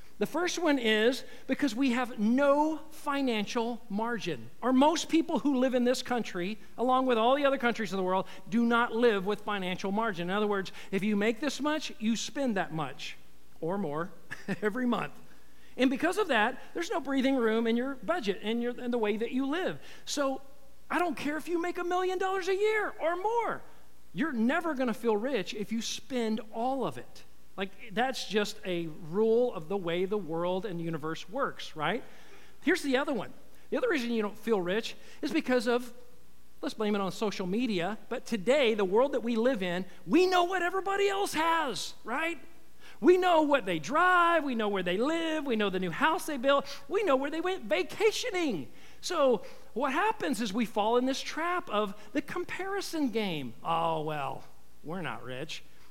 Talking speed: 195 wpm